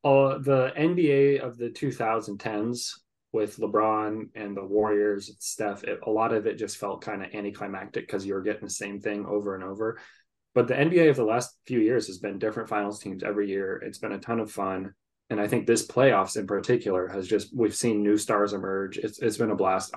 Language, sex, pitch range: English, male, 105-120 Hz